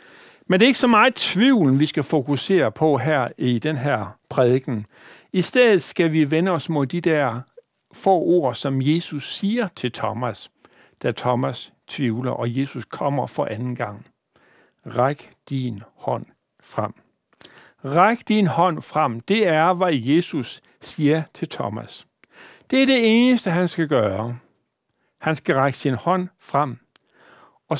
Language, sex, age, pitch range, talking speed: Danish, male, 60-79, 125-170 Hz, 150 wpm